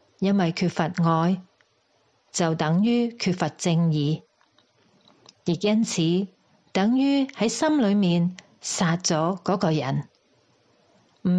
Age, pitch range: 40-59, 165-210 Hz